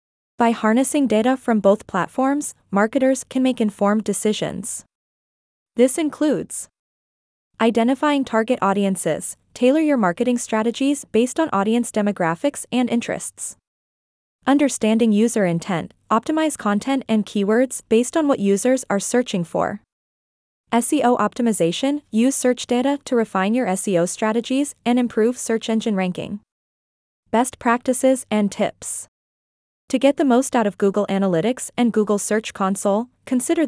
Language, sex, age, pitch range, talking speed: English, female, 20-39, 200-255 Hz, 130 wpm